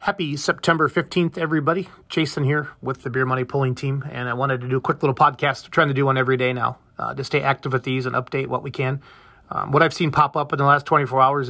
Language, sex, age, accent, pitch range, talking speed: English, male, 30-49, American, 125-150 Hz, 260 wpm